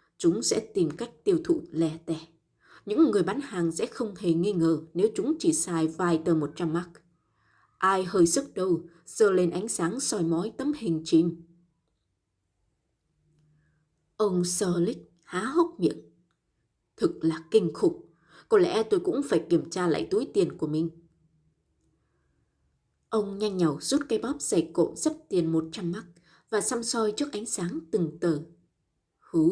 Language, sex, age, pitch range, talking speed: Vietnamese, female, 20-39, 165-260 Hz, 165 wpm